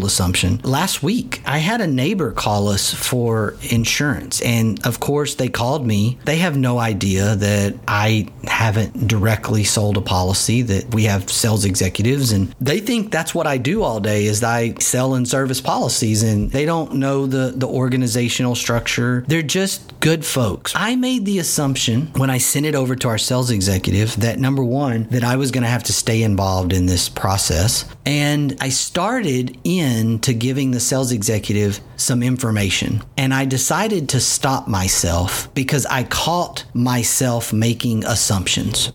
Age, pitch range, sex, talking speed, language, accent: 40-59, 110-140 Hz, male, 170 wpm, English, American